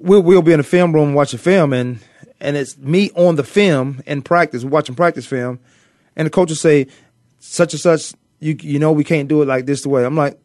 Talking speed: 245 wpm